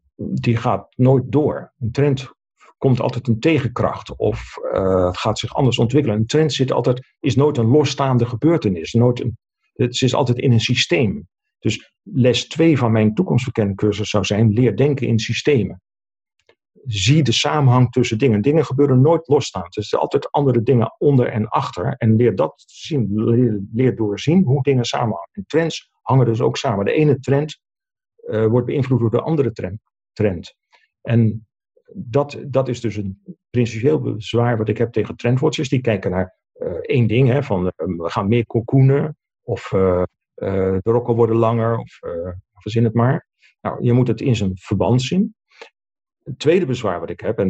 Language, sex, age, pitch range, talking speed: Dutch, male, 50-69, 110-140 Hz, 175 wpm